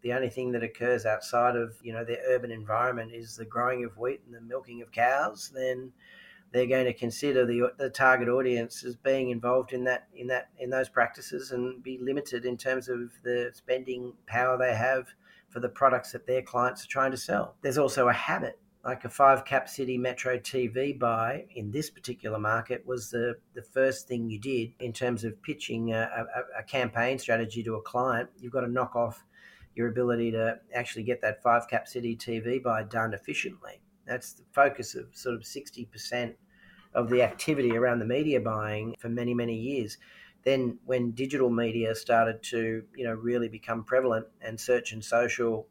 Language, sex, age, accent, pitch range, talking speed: English, male, 40-59, Australian, 115-125 Hz, 195 wpm